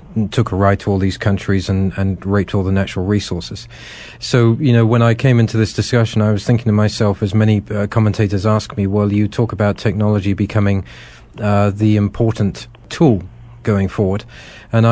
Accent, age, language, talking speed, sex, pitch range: British, 40-59, English, 190 wpm, male, 100-115 Hz